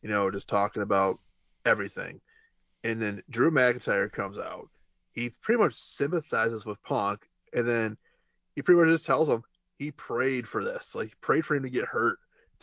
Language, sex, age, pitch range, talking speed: English, male, 20-39, 110-155 Hz, 180 wpm